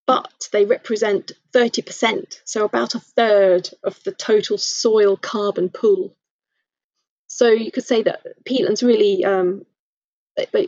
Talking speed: 135 wpm